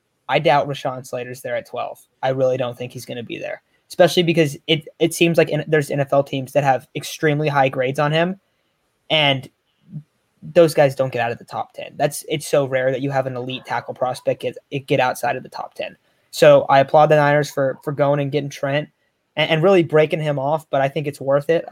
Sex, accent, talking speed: male, American, 235 wpm